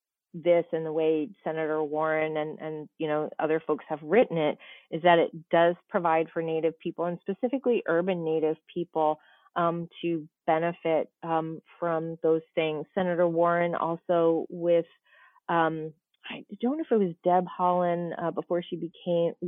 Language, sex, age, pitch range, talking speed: English, female, 30-49, 160-180 Hz, 160 wpm